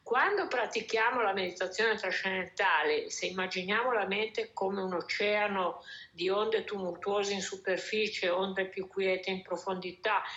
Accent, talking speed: native, 125 wpm